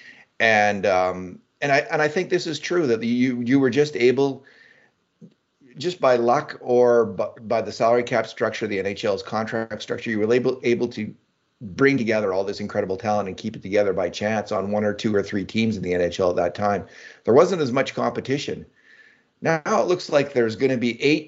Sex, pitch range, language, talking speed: male, 100-130 Hz, English, 205 wpm